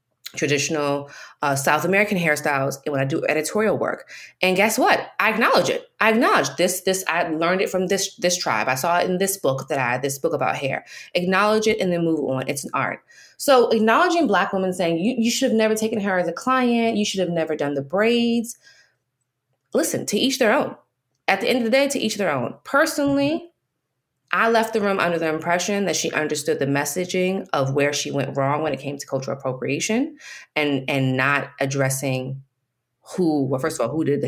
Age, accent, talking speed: 20-39, American, 215 wpm